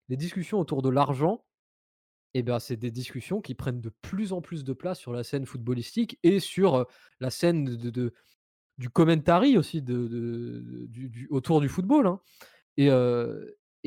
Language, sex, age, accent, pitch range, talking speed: French, male, 20-39, French, 125-170 Hz, 175 wpm